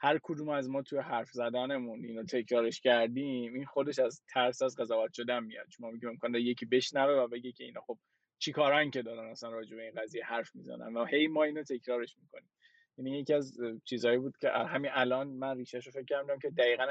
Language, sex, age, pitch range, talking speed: Persian, male, 20-39, 120-145 Hz, 205 wpm